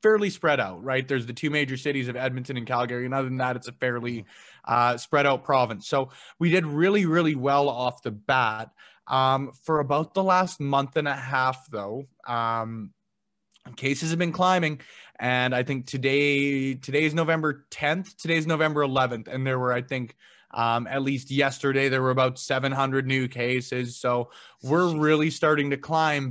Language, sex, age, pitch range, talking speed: English, male, 20-39, 125-155 Hz, 185 wpm